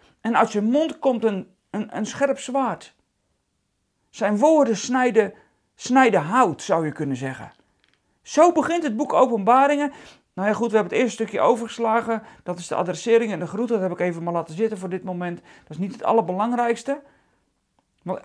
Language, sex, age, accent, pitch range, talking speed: Dutch, male, 40-59, Dutch, 200-270 Hz, 185 wpm